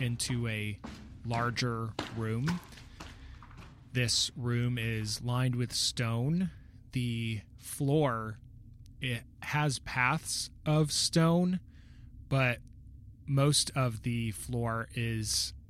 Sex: male